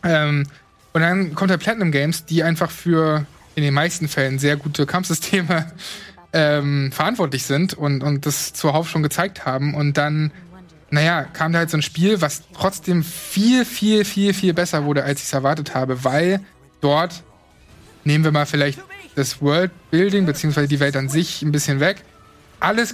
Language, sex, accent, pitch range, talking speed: German, male, German, 145-175 Hz, 175 wpm